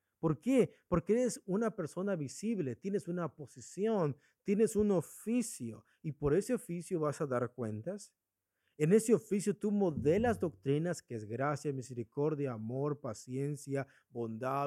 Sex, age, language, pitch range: male, 50-69, English, 110-180 Hz